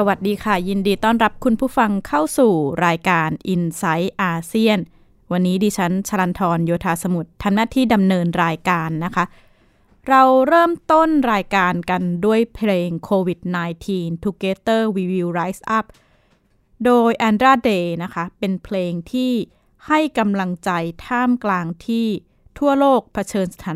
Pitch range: 180-225 Hz